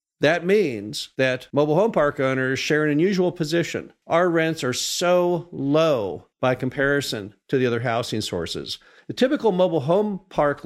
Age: 50-69